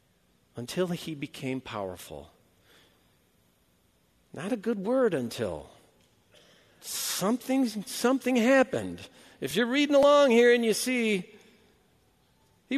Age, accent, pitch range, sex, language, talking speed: 50-69, American, 115-190 Hz, male, English, 100 wpm